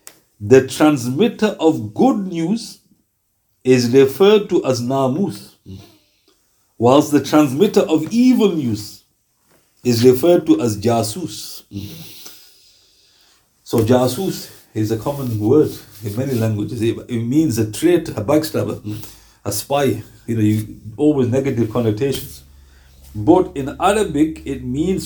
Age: 50-69